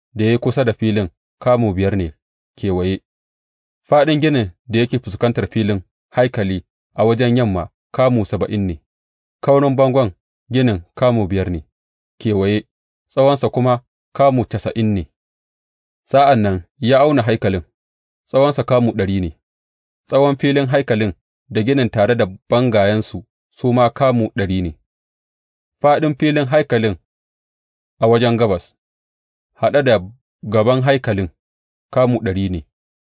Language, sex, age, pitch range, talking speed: English, male, 30-49, 90-125 Hz, 120 wpm